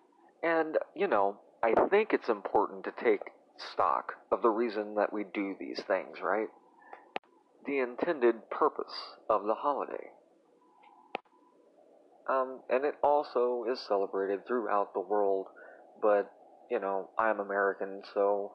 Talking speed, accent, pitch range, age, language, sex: 130 wpm, American, 100-130 Hz, 30-49, English, male